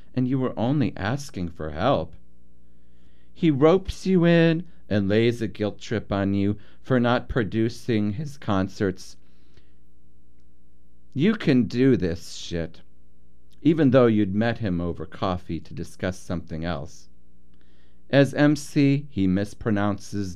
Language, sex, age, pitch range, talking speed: English, male, 40-59, 80-115 Hz, 125 wpm